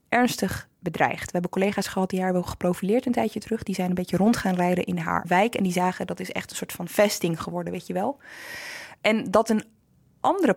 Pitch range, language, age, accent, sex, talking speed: 185-240 Hz, Dutch, 20-39, Dutch, female, 235 wpm